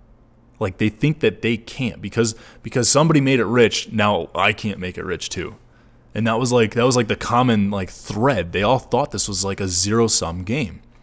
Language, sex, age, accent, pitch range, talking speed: English, male, 20-39, American, 95-120 Hz, 220 wpm